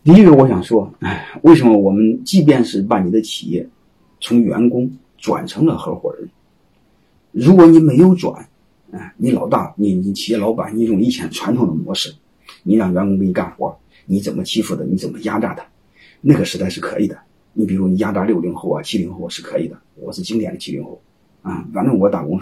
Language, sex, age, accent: Chinese, male, 30-49, native